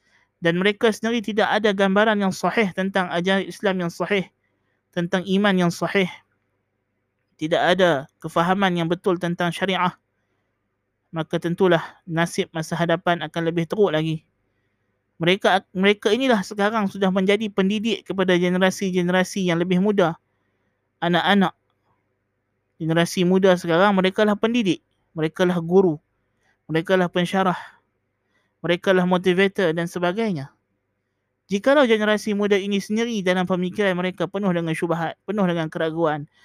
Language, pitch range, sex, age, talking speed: Malay, 150-195 Hz, male, 20-39, 125 wpm